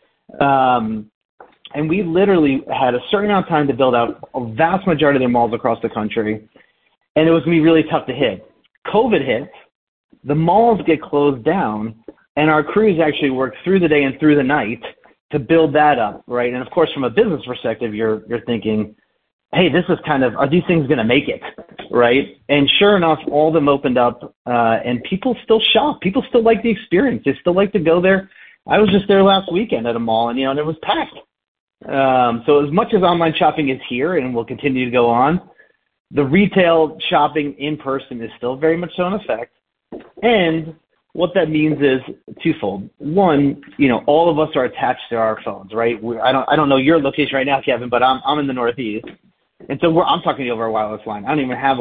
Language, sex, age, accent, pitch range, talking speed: English, male, 30-49, American, 120-170 Hz, 225 wpm